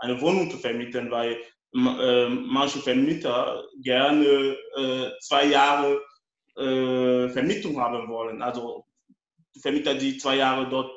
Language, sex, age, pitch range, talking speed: German, male, 20-39, 125-145 Hz, 120 wpm